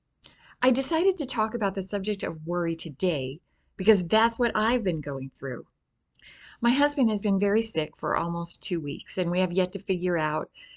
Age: 30-49